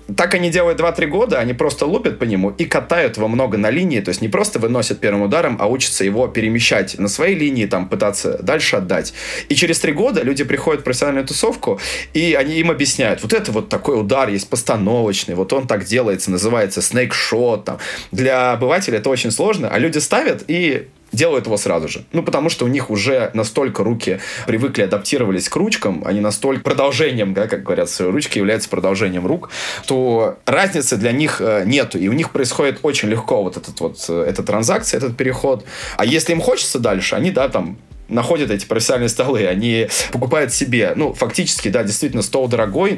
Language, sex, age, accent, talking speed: Russian, male, 20-39, native, 190 wpm